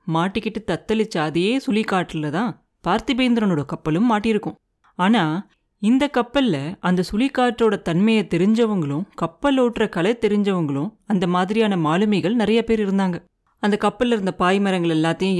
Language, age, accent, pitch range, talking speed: Tamil, 30-49, native, 175-225 Hz, 110 wpm